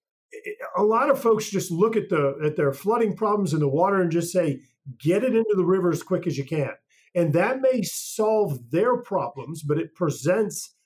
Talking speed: 205 wpm